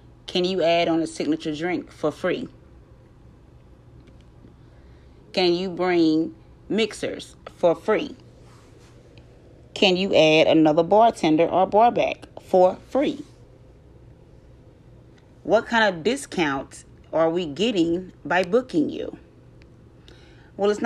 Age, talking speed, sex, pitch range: 30-49, 105 wpm, female, 160-205 Hz